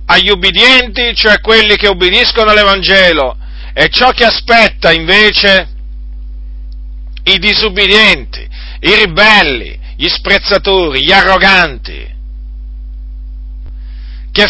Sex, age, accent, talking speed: male, 50-69, native, 85 wpm